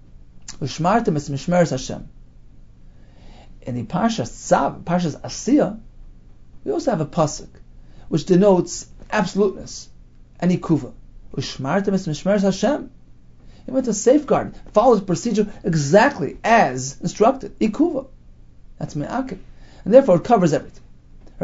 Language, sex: English, male